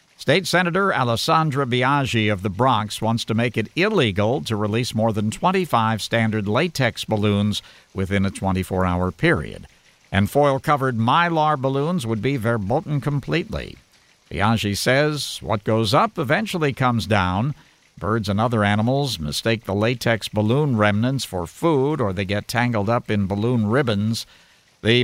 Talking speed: 145 wpm